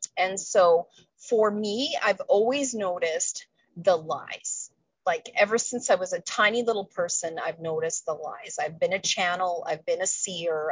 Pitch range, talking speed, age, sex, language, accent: 170-250 Hz, 170 wpm, 30-49, female, English, American